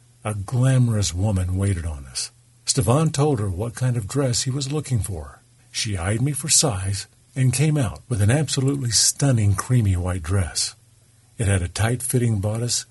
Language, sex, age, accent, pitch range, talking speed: English, male, 50-69, American, 105-130 Hz, 170 wpm